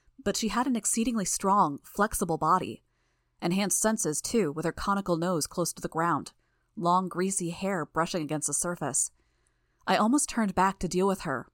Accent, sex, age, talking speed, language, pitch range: American, female, 20-39, 175 wpm, English, 160-195 Hz